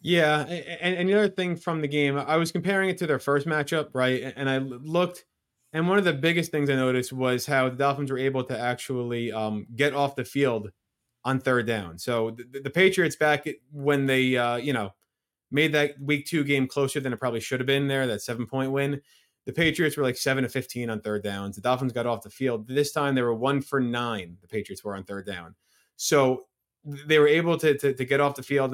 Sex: male